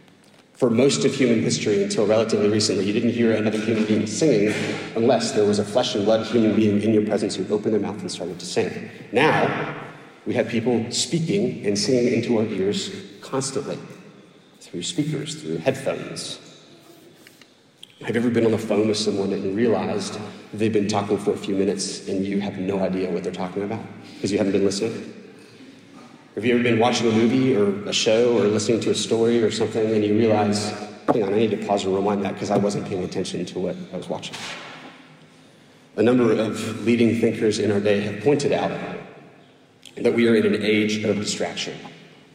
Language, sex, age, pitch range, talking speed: English, male, 30-49, 105-115 Hz, 200 wpm